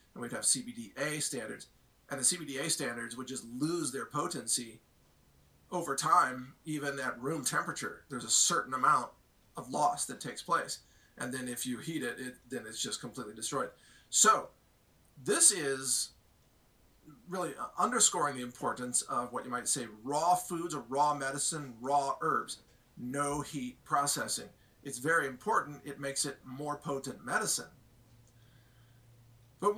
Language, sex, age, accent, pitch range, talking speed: English, male, 40-59, American, 125-150 Hz, 145 wpm